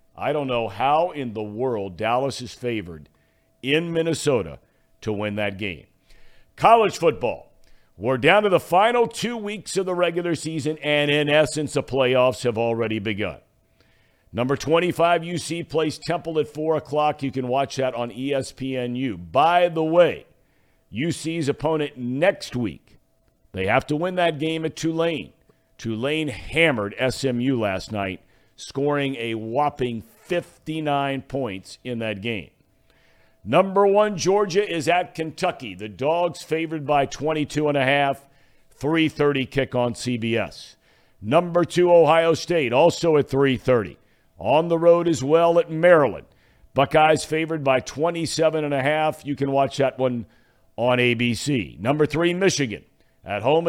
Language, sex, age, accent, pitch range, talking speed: English, male, 50-69, American, 120-160 Hz, 145 wpm